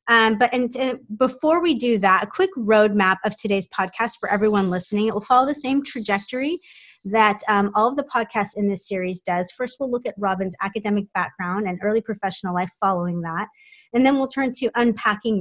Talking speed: 205 wpm